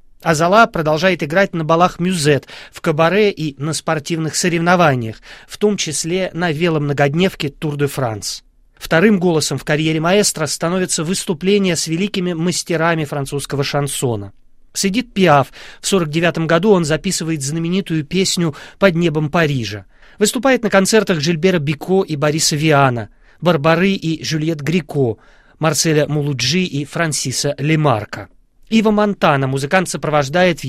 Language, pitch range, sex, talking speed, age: Russian, 145-185 Hz, male, 125 wpm, 30-49